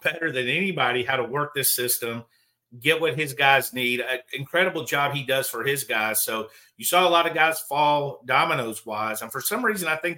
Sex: male